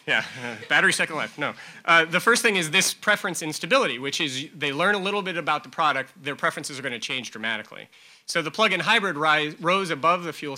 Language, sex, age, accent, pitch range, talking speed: English, male, 30-49, American, 140-190 Hz, 220 wpm